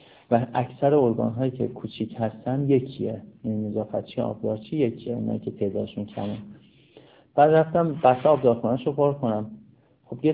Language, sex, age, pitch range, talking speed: Persian, male, 50-69, 110-140 Hz, 155 wpm